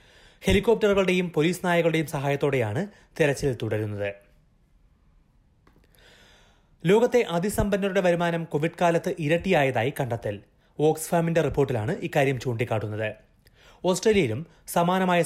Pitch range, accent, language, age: 125-170 Hz, native, Malayalam, 30-49